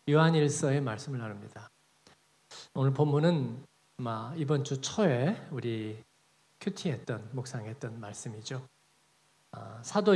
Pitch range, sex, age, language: 125-160 Hz, male, 40-59, Korean